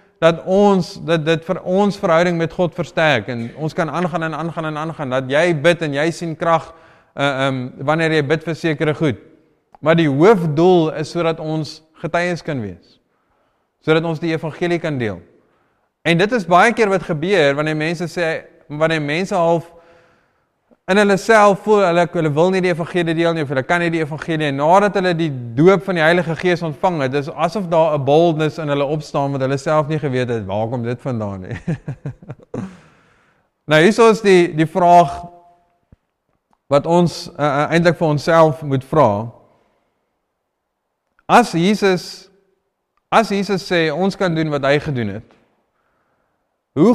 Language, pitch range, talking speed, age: English, 150-175 Hz, 175 wpm, 20-39